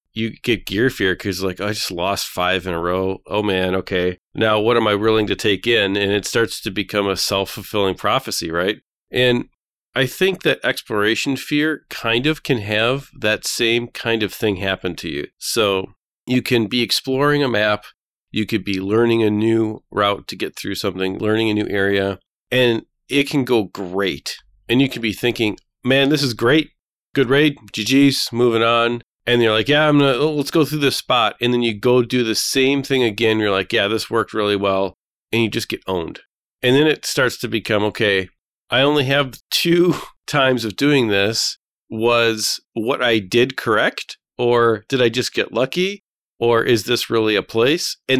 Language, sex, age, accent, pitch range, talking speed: English, male, 40-59, American, 105-130 Hz, 195 wpm